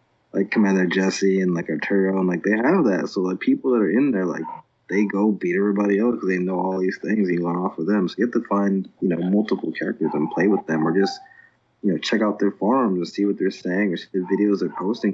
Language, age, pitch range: English, 20-39, 90-100 Hz